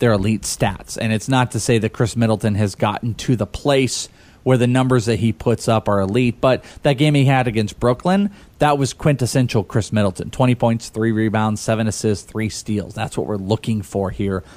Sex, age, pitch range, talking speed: male, 30-49, 110-145 Hz, 210 wpm